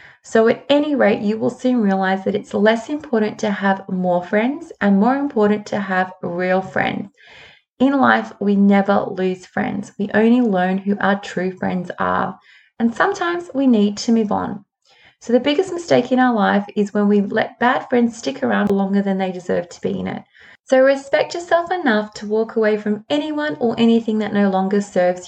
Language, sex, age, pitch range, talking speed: English, female, 20-39, 200-245 Hz, 195 wpm